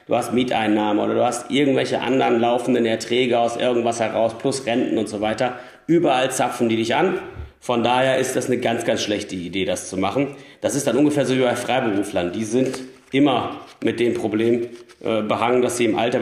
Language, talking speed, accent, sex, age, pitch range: German, 205 wpm, German, male, 40-59, 115-170 Hz